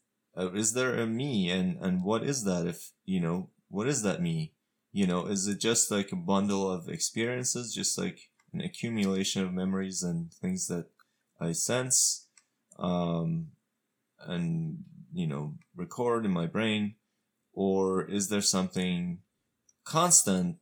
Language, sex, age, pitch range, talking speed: English, male, 20-39, 85-125 Hz, 145 wpm